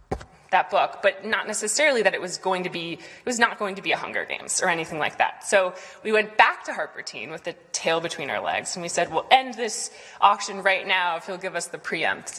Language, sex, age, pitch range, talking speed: English, female, 20-39, 180-205 Hz, 255 wpm